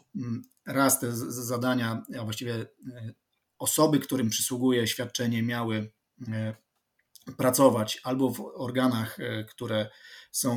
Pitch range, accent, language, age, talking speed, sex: 120-150 Hz, native, Polish, 30-49, 90 wpm, male